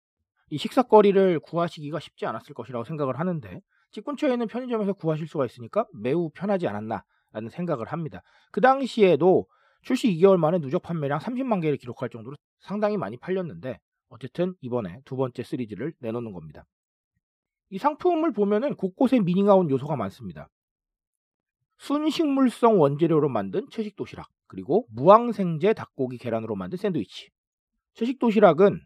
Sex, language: male, Korean